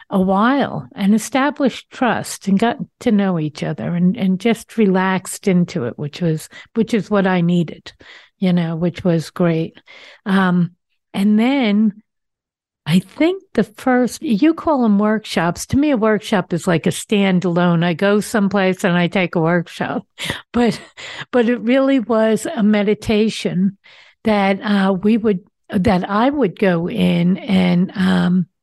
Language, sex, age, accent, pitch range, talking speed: English, female, 60-79, American, 175-215 Hz, 155 wpm